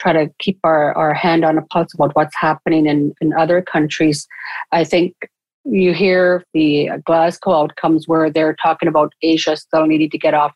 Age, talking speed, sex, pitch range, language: 40-59, 190 wpm, female, 155-175 Hz, English